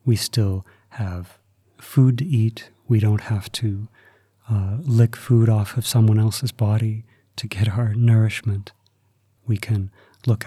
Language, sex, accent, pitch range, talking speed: English, male, American, 100-120 Hz, 145 wpm